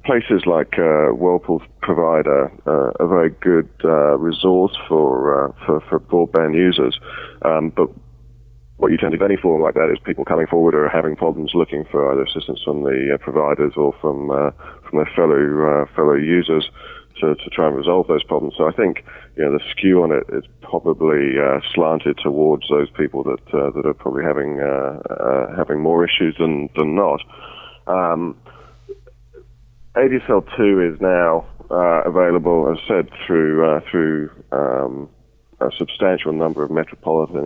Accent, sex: British, male